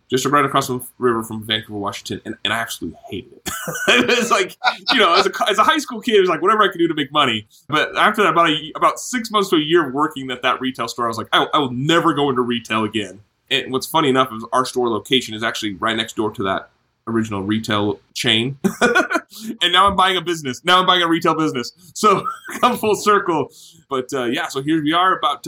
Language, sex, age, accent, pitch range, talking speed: English, male, 20-39, American, 110-150 Hz, 245 wpm